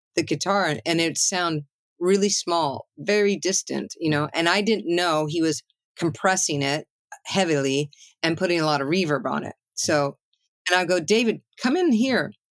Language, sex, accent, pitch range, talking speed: English, female, American, 145-185 Hz, 175 wpm